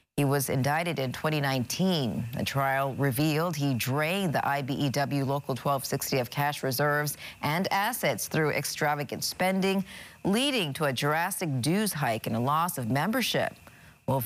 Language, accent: English, American